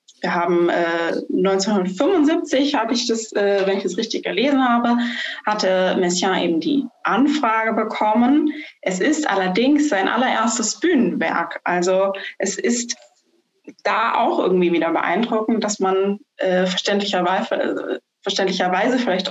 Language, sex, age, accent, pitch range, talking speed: German, female, 20-39, German, 185-240 Hz, 125 wpm